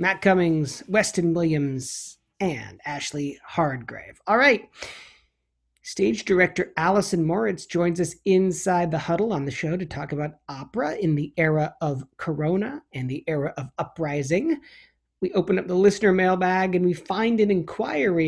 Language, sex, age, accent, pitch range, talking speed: English, male, 40-59, American, 140-180 Hz, 150 wpm